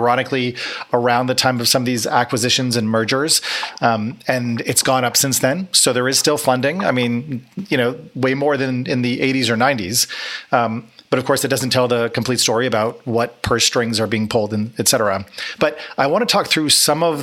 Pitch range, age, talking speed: 120-145 Hz, 40-59, 220 wpm